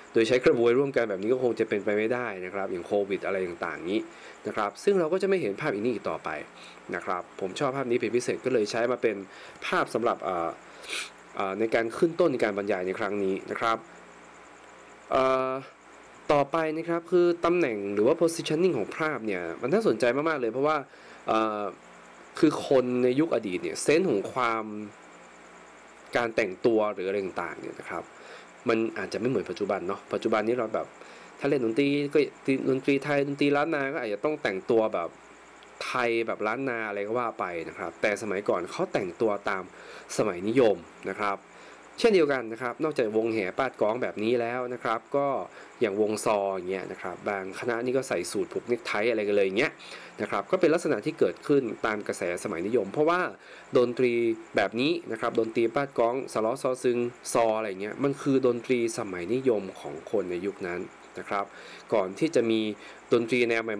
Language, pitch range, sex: Thai, 110-140 Hz, male